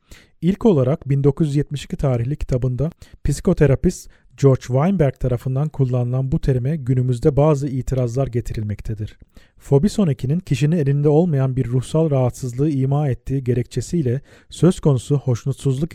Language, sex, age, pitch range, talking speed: Turkish, male, 40-59, 125-150 Hz, 110 wpm